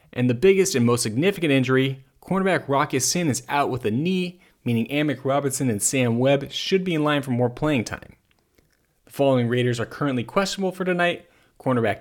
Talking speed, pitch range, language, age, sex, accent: 190 wpm, 120-165 Hz, English, 30-49, male, American